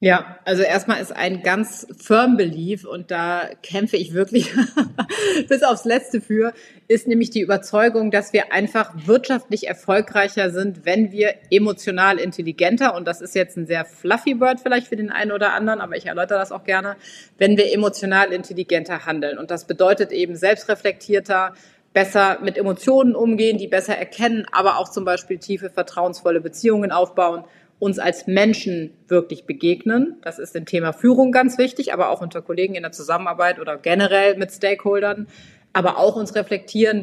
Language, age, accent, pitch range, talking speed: German, 30-49, German, 180-215 Hz, 165 wpm